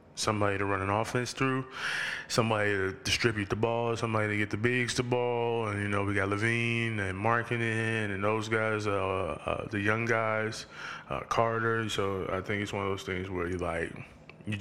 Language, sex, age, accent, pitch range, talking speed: English, male, 20-39, American, 95-115 Hz, 195 wpm